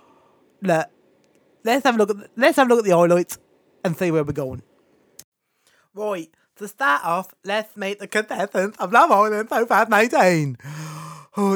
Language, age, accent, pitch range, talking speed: English, 30-49, British, 175-245 Hz, 170 wpm